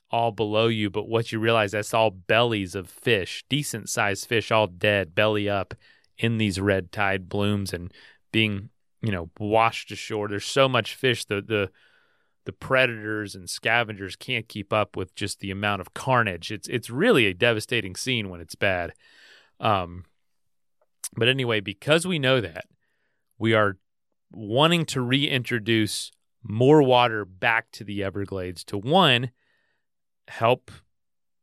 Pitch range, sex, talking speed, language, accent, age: 100-120 Hz, male, 150 wpm, English, American, 30-49